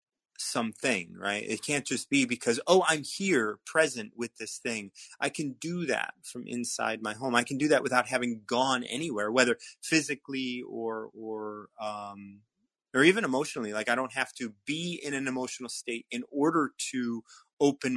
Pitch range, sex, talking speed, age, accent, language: 110-145 Hz, male, 175 wpm, 30-49, American, English